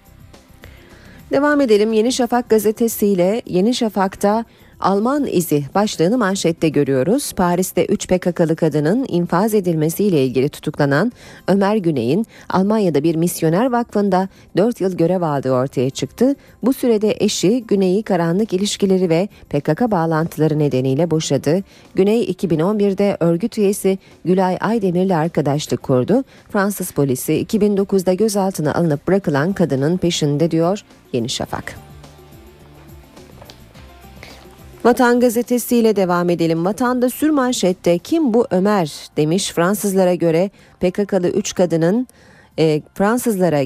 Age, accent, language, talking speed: 40-59, native, Turkish, 110 wpm